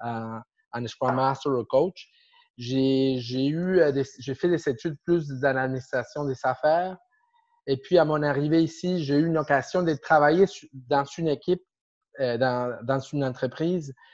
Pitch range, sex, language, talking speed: 135-175 Hz, male, French, 155 wpm